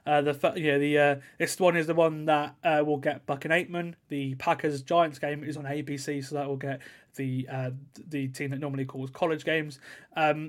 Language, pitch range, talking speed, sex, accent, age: English, 145-170 Hz, 230 wpm, male, British, 20-39